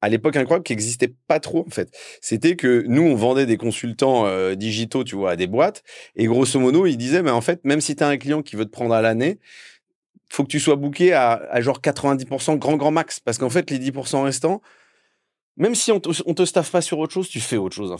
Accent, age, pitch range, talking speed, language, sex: French, 30-49, 110-150 Hz, 255 wpm, French, male